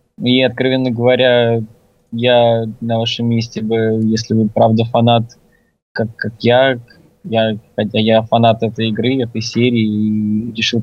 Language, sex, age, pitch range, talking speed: Russian, male, 20-39, 115-130 Hz, 140 wpm